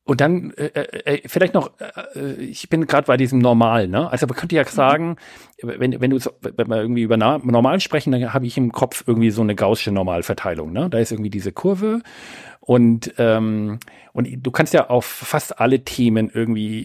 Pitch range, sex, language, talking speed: 115-150 Hz, male, German, 195 wpm